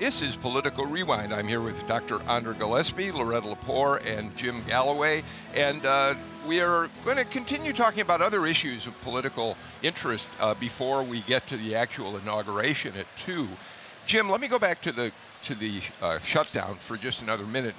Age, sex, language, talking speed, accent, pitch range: 50-69, male, English, 180 wpm, American, 110-140 Hz